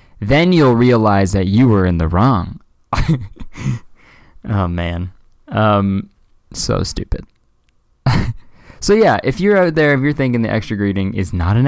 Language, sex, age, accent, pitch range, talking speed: English, male, 20-39, American, 95-125 Hz, 150 wpm